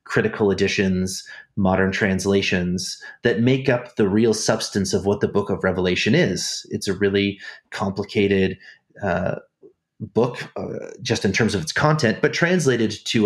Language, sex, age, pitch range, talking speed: English, male, 30-49, 100-120 Hz, 150 wpm